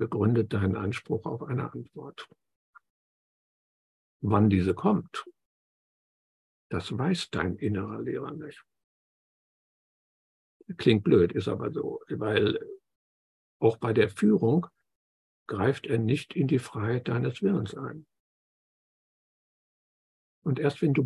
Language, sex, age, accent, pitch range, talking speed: German, male, 60-79, German, 105-145 Hz, 110 wpm